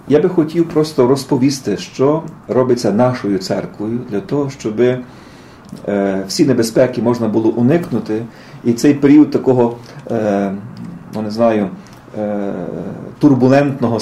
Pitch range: 115-145 Hz